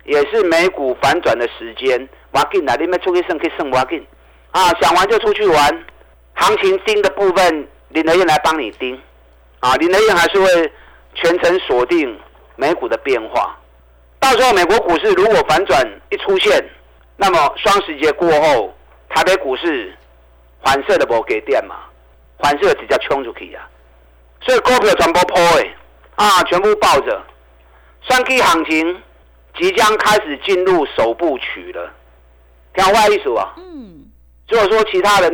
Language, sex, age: Chinese, male, 50-69